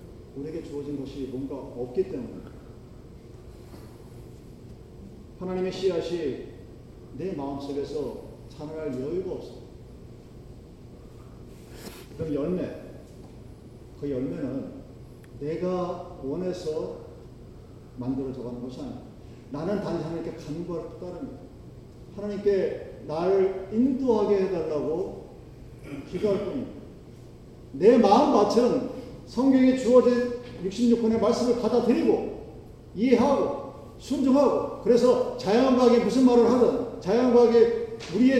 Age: 40-59